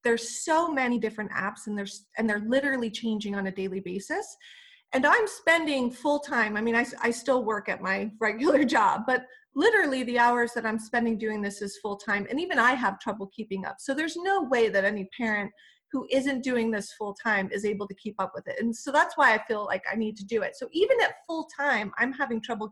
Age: 30-49